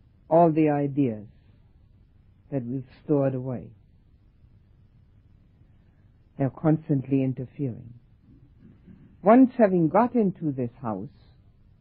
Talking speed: 80 wpm